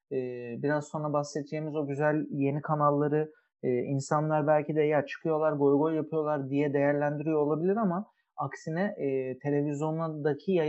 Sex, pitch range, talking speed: male, 145-180 Hz, 110 wpm